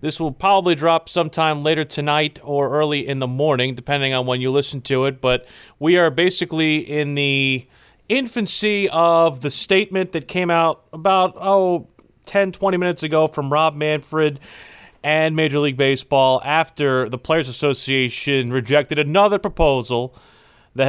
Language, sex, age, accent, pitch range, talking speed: English, male, 30-49, American, 130-165 Hz, 150 wpm